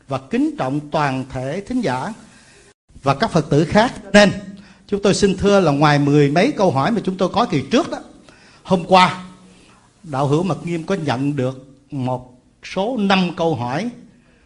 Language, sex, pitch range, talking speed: Vietnamese, male, 145-200 Hz, 185 wpm